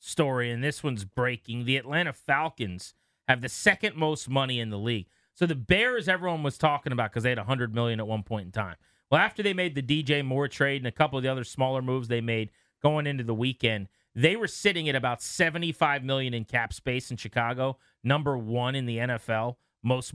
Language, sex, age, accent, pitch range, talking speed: English, male, 30-49, American, 120-155 Hz, 220 wpm